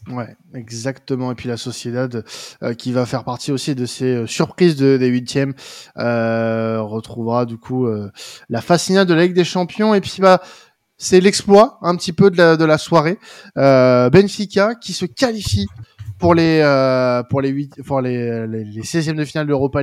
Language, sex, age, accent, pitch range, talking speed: French, male, 20-39, French, 125-160 Hz, 190 wpm